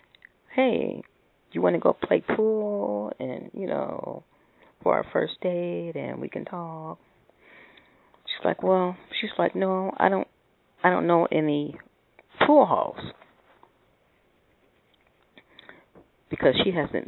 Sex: female